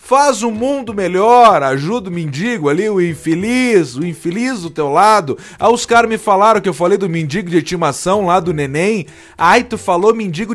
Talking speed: 195 wpm